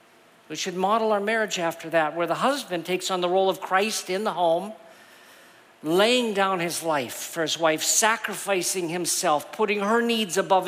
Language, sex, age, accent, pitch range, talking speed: English, male, 50-69, American, 175-210 Hz, 180 wpm